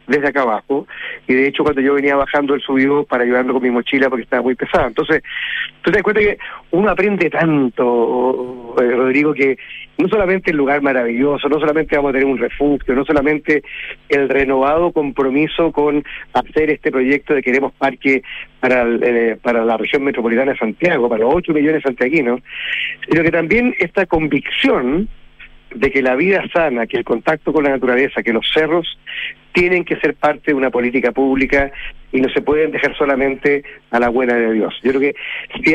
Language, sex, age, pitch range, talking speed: Spanish, male, 40-59, 130-165 Hz, 185 wpm